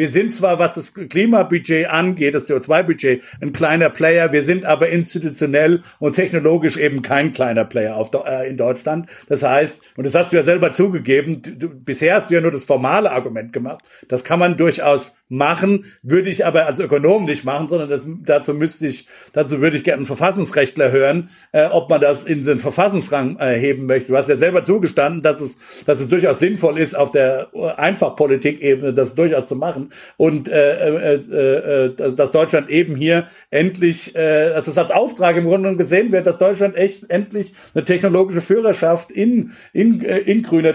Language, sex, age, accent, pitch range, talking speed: German, male, 50-69, German, 150-195 Hz, 190 wpm